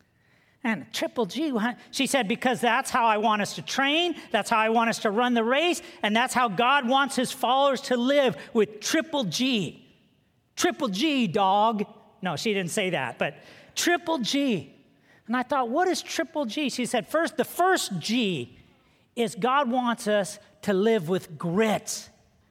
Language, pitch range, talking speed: English, 210-270 Hz, 175 wpm